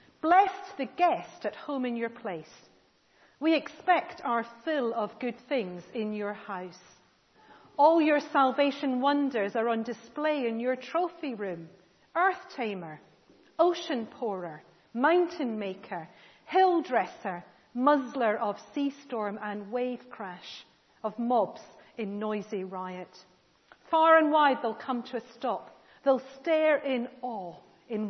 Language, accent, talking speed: English, British, 130 wpm